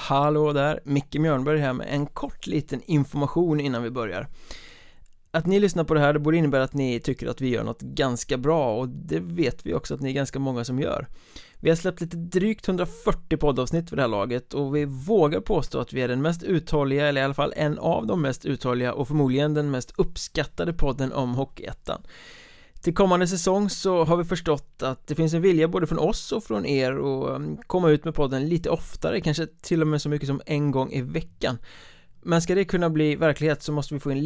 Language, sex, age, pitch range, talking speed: Swedish, male, 20-39, 135-165 Hz, 220 wpm